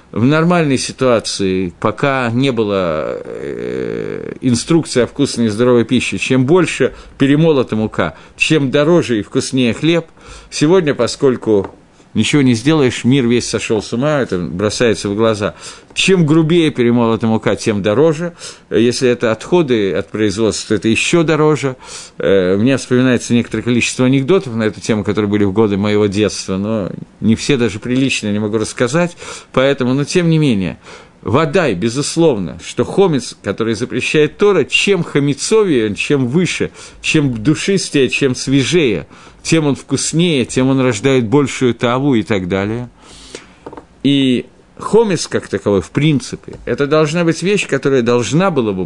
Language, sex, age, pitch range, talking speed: Russian, male, 50-69, 105-150 Hz, 145 wpm